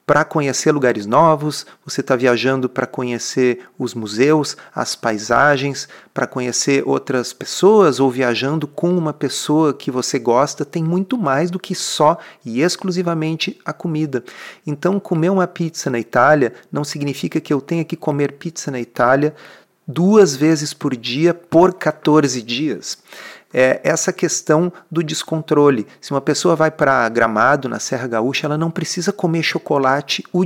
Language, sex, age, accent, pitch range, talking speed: Portuguese, male, 40-59, Brazilian, 135-170 Hz, 155 wpm